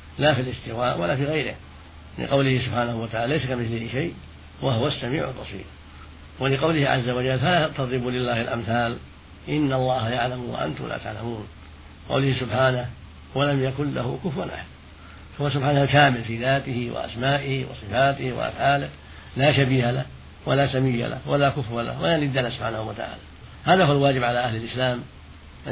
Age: 60-79